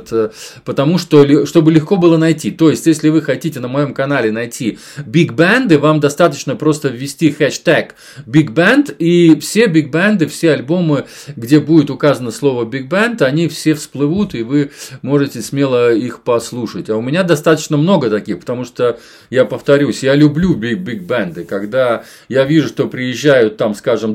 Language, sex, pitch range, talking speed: Russian, male, 130-165 Hz, 165 wpm